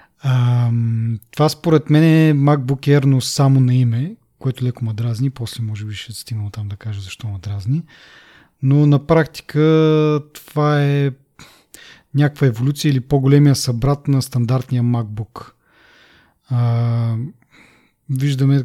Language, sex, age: Bulgarian, male, 30-49